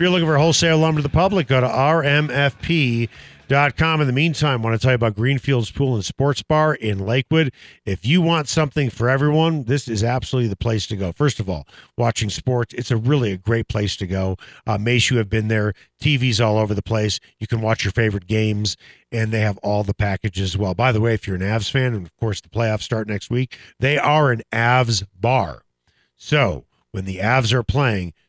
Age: 50-69